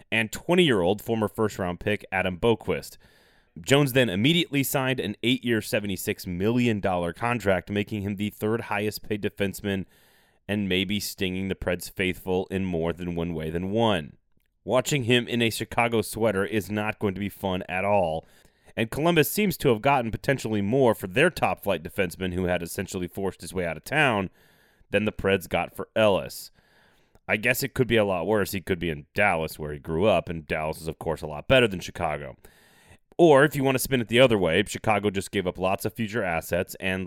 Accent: American